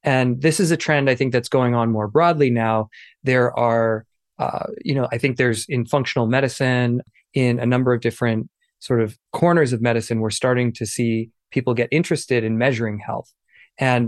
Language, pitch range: English, 115-140 Hz